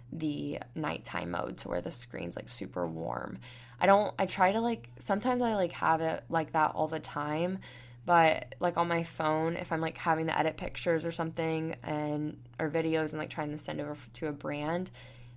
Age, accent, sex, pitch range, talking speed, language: 10-29, American, female, 150-170 Hz, 205 wpm, English